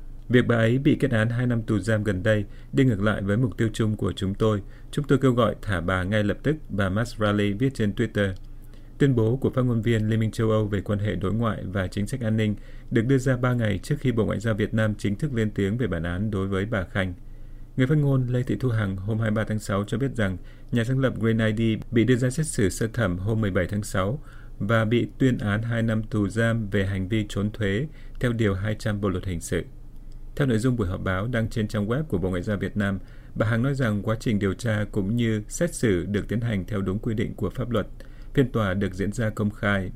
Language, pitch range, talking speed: Vietnamese, 100-120 Hz, 265 wpm